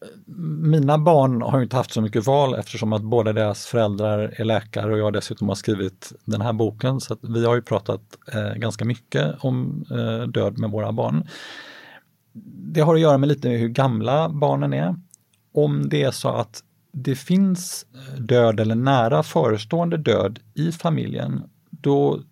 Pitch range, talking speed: 110-135 Hz, 170 wpm